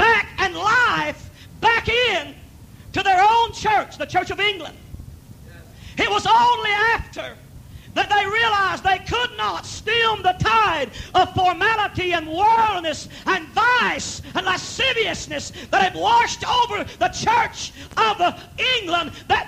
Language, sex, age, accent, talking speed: English, male, 50-69, American, 130 wpm